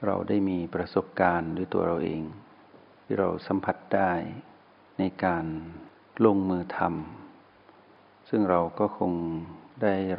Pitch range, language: 85-100 Hz, Thai